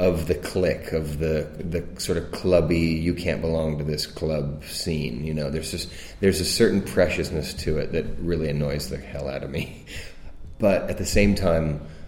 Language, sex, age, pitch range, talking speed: German, male, 30-49, 75-85 Hz, 195 wpm